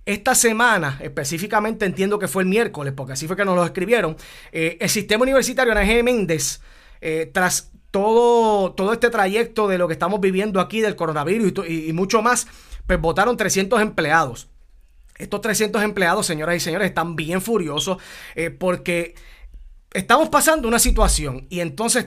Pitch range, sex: 175-235 Hz, male